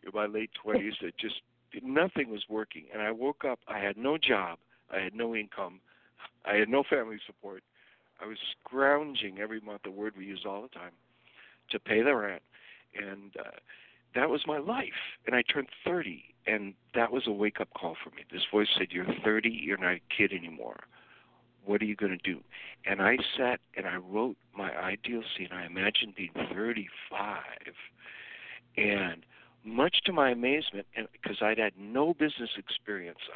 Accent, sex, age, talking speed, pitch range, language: American, male, 60-79, 175 wpm, 105-135 Hz, English